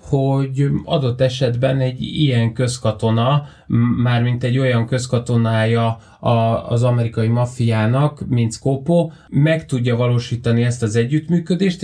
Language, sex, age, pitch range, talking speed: Hungarian, male, 30-49, 120-150 Hz, 105 wpm